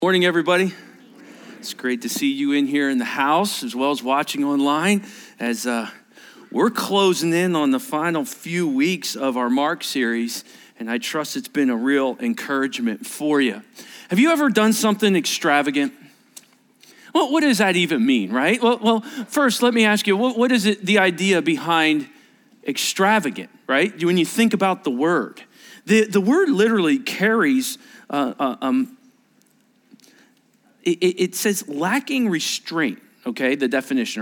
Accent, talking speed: American, 160 wpm